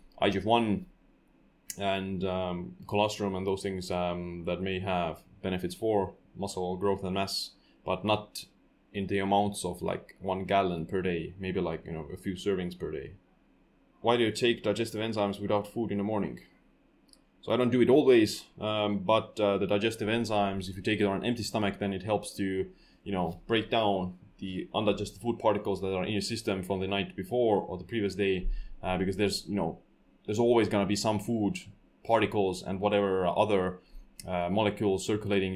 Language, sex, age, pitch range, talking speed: English, male, 20-39, 95-105 Hz, 190 wpm